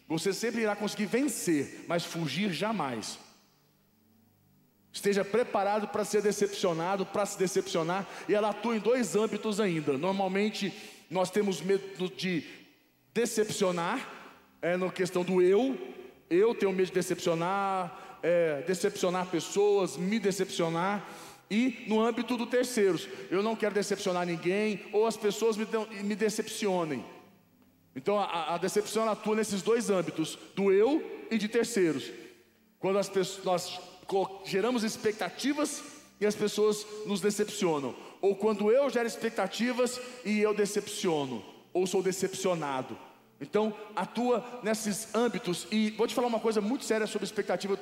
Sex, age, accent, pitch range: male, 40-59, Brazilian, 185-220 Hz